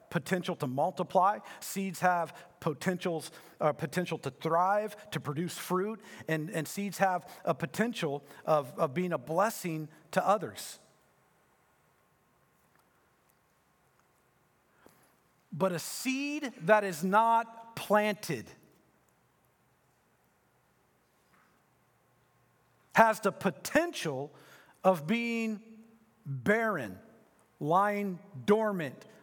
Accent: American